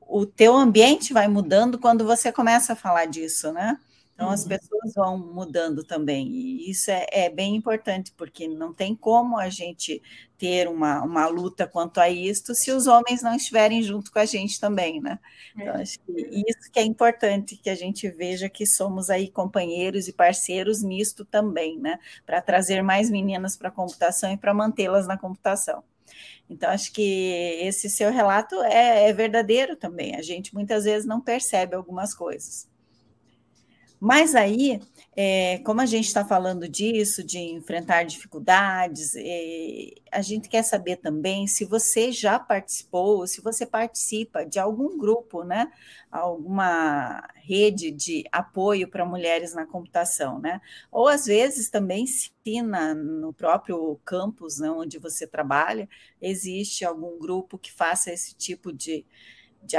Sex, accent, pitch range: female, Brazilian, 175-220 Hz